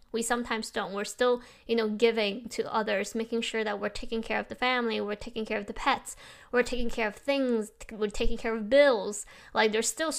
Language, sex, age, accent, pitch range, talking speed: English, female, 10-29, American, 210-250 Hz, 225 wpm